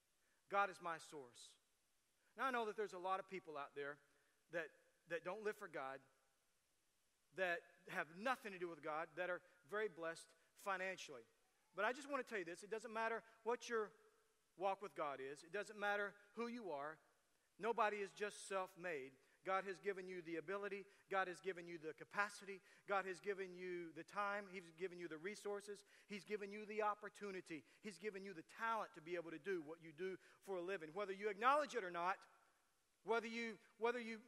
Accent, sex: American, male